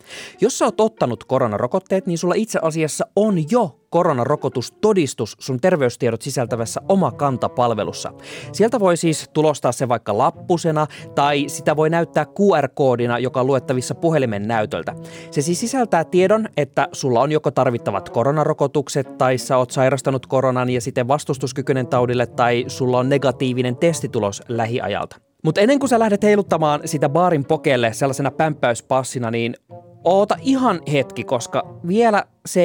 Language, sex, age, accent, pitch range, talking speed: Finnish, male, 20-39, native, 125-175 Hz, 140 wpm